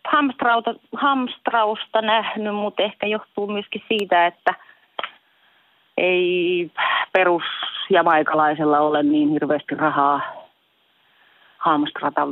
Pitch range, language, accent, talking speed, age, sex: 145-185 Hz, Finnish, native, 75 wpm, 30-49, female